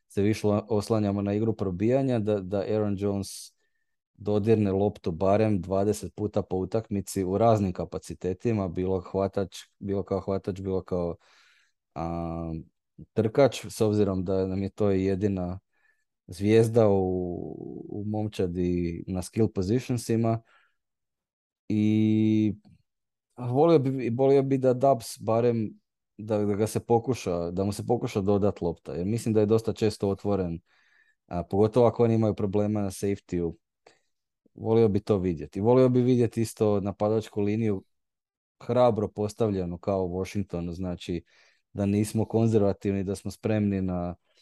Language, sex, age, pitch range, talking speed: Croatian, male, 20-39, 95-110 Hz, 140 wpm